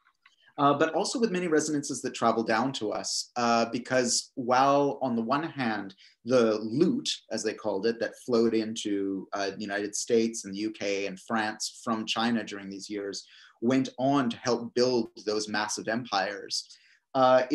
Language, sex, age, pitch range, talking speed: English, male, 30-49, 110-135 Hz, 170 wpm